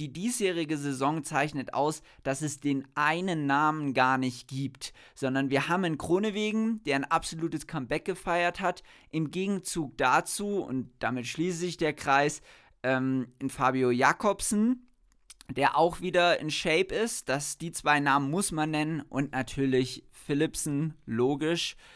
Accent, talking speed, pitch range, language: German, 145 wpm, 125-160 Hz, German